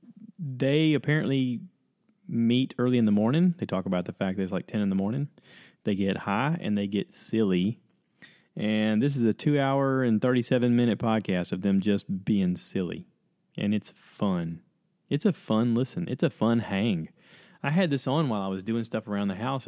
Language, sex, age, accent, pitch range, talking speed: English, male, 30-49, American, 105-150 Hz, 195 wpm